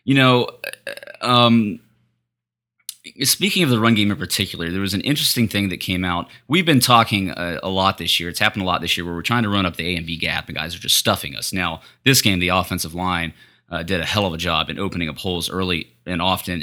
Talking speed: 250 wpm